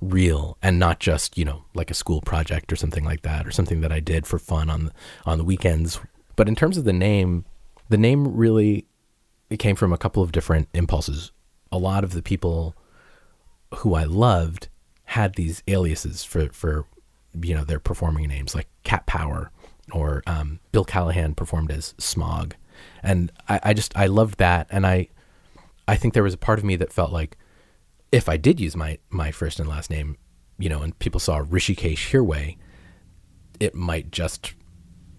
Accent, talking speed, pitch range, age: American, 190 wpm, 80-105 Hz, 30-49